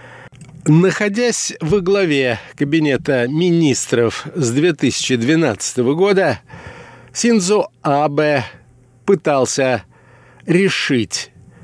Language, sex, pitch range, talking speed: Russian, male, 125-165 Hz, 60 wpm